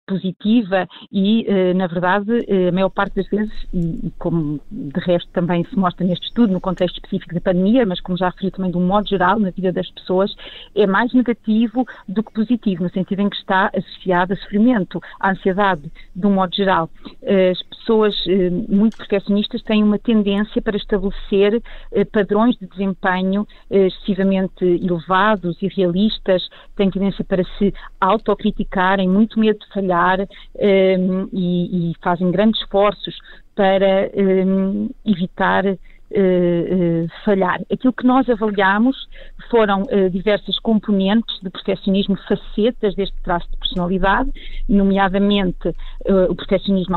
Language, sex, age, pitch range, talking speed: Portuguese, female, 40-59, 185-210 Hz, 140 wpm